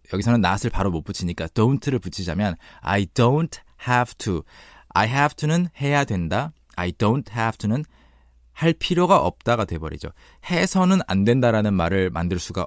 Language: Korean